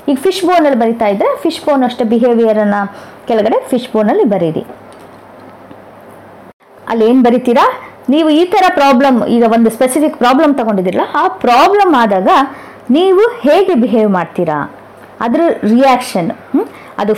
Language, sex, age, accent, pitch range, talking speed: Kannada, female, 20-39, native, 230-315 Hz, 60 wpm